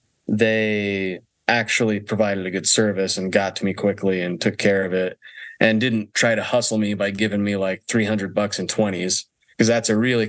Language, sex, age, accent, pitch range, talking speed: English, male, 20-39, American, 95-110 Hz, 200 wpm